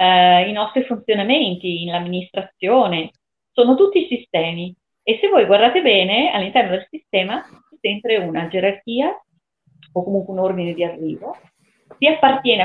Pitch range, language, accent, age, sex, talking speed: 170-235 Hz, Italian, native, 30-49, female, 135 wpm